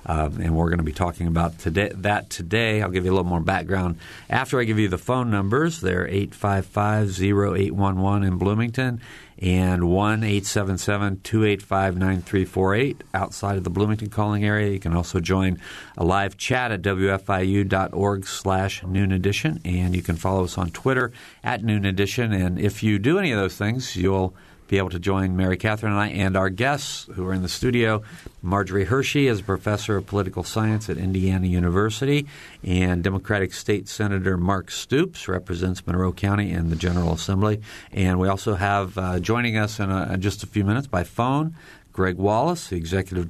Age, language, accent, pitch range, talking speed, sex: 50-69, English, American, 90-105 Hz, 195 wpm, male